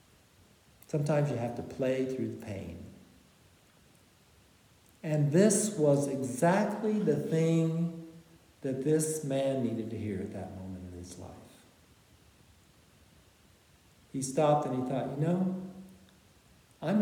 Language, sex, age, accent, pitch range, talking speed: English, male, 60-79, American, 125-165 Hz, 120 wpm